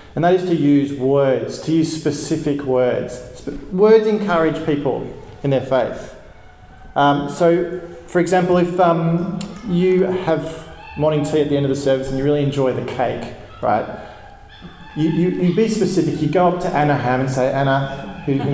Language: English